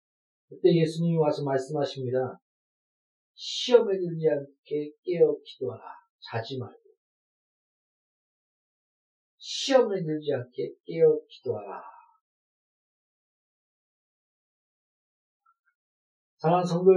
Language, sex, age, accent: Korean, male, 40-59, native